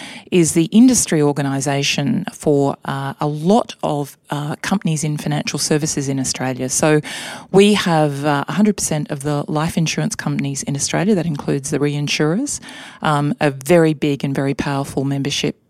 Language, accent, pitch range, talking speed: English, Australian, 140-170 Hz, 155 wpm